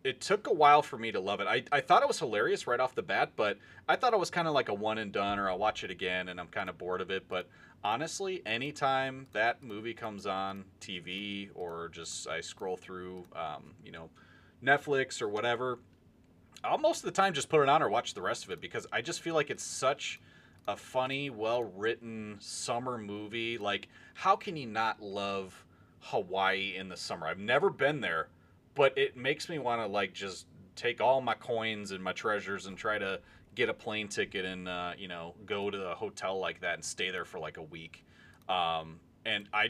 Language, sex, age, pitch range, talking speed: English, male, 30-49, 95-125 Hz, 220 wpm